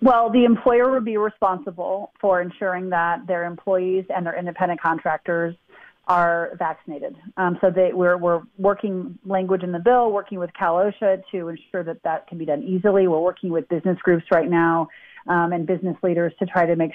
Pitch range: 165-190 Hz